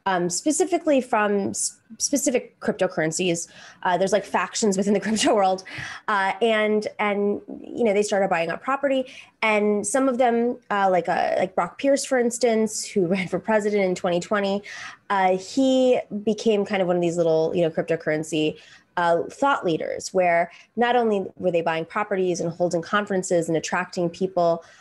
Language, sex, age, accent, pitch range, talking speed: English, female, 20-39, American, 180-245 Hz, 170 wpm